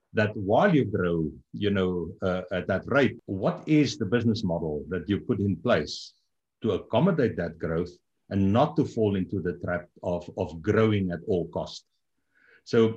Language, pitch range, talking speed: English, 95-130 Hz, 165 wpm